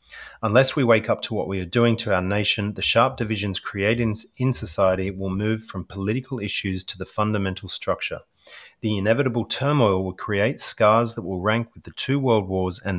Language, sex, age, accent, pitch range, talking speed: English, male, 30-49, Australian, 95-115 Hz, 195 wpm